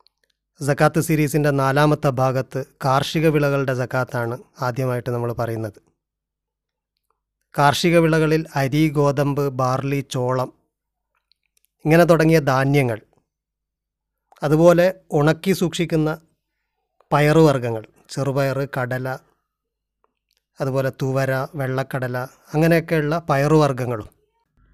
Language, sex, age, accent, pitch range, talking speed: Malayalam, male, 30-49, native, 135-160 Hz, 70 wpm